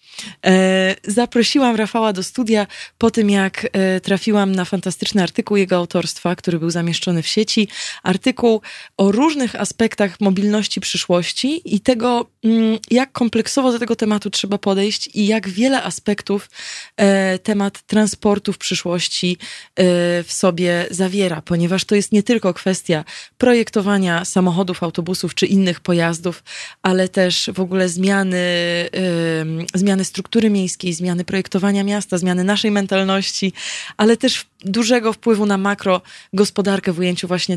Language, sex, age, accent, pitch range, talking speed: Polish, female, 20-39, native, 185-220 Hz, 125 wpm